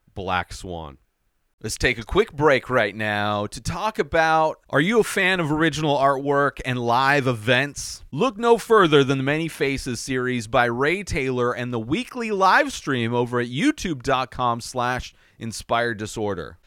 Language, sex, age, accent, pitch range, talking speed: English, male, 30-49, American, 120-170 Hz, 155 wpm